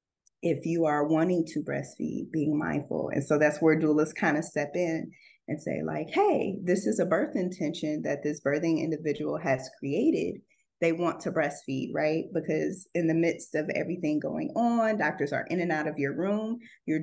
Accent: American